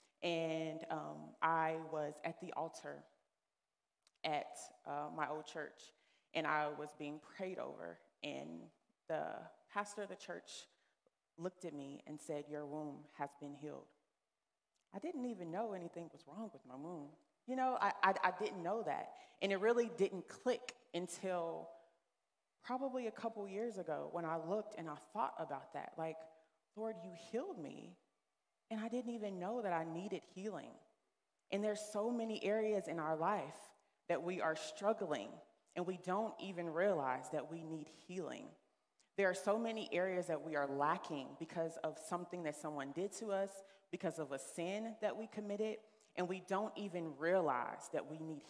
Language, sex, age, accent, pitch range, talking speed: English, female, 20-39, American, 160-210 Hz, 170 wpm